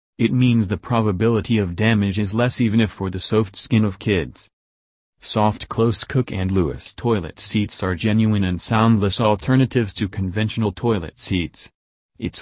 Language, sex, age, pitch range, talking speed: English, male, 30-49, 95-115 Hz, 160 wpm